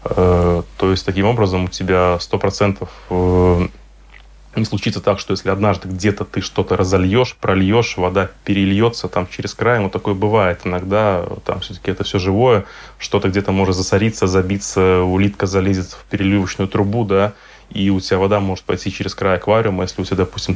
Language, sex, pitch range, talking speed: Russian, male, 95-100 Hz, 165 wpm